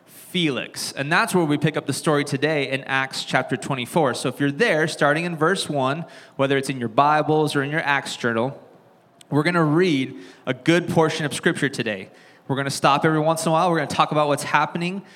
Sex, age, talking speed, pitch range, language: male, 20-39, 230 wpm, 135-165 Hz, English